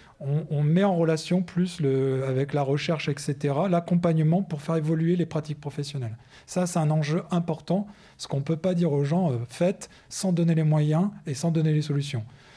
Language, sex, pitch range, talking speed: French, male, 135-170 Hz, 195 wpm